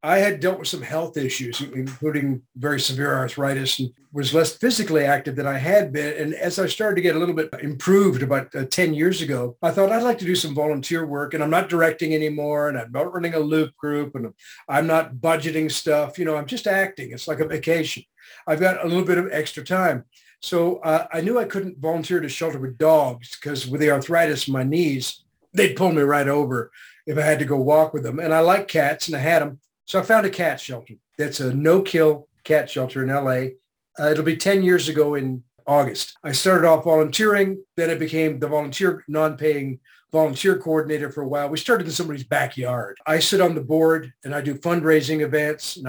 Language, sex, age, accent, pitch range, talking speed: English, male, 50-69, American, 140-165 Hz, 220 wpm